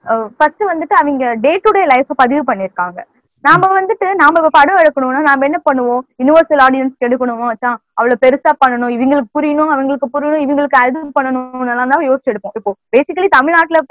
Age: 20-39